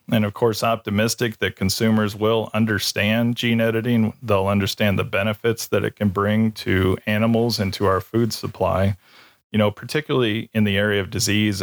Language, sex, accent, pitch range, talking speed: English, male, American, 100-115 Hz, 170 wpm